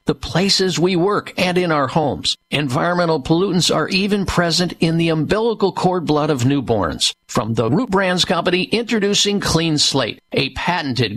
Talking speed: 160 wpm